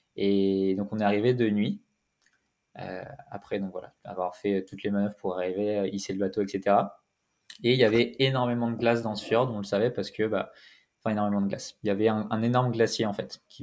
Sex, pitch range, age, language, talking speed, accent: male, 100-120 Hz, 20-39, French, 230 wpm, French